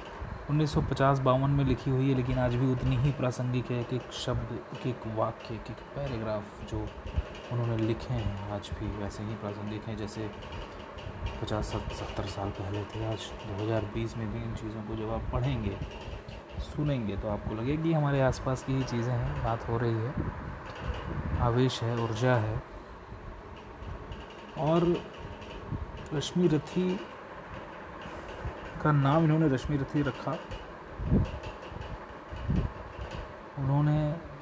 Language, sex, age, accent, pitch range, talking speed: Hindi, male, 30-49, native, 105-130 Hz, 130 wpm